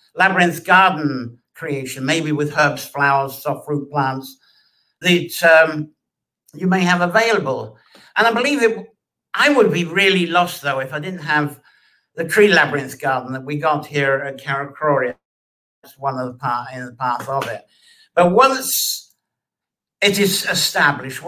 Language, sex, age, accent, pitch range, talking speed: English, male, 60-79, British, 135-175 Hz, 160 wpm